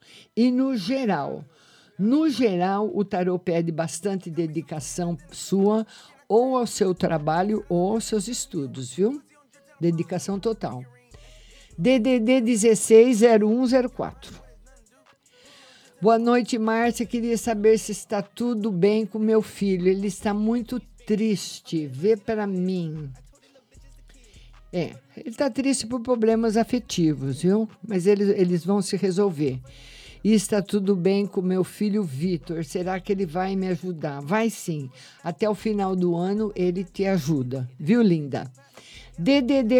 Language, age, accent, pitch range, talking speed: Portuguese, 50-69, Brazilian, 170-230 Hz, 125 wpm